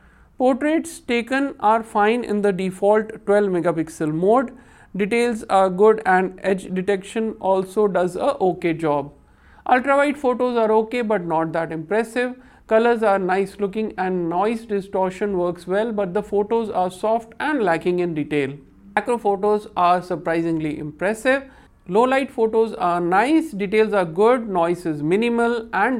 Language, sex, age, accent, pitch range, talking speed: English, male, 50-69, Indian, 180-230 Hz, 145 wpm